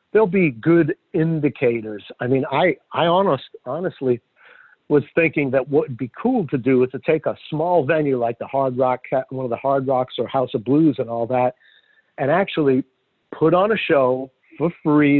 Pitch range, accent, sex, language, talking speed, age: 130-155 Hz, American, male, English, 195 wpm, 50-69